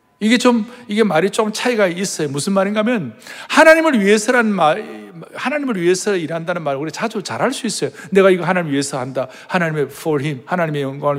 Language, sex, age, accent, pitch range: Korean, male, 60-79, native, 195-305 Hz